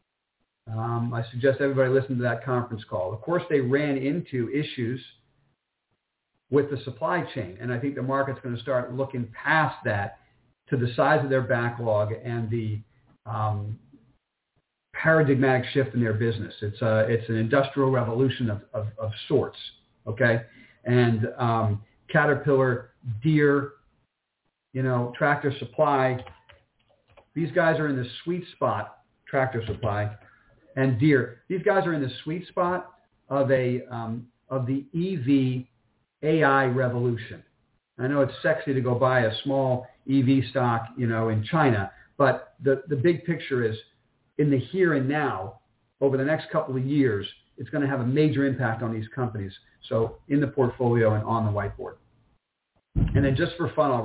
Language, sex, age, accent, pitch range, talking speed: English, male, 50-69, American, 115-140 Hz, 160 wpm